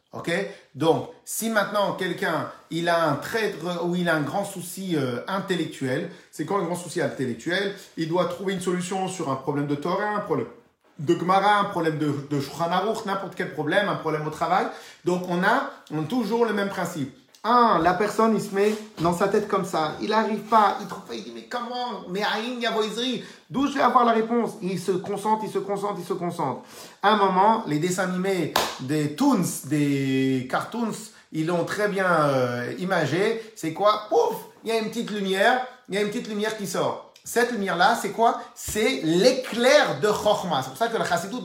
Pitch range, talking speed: 175-240 Hz, 210 wpm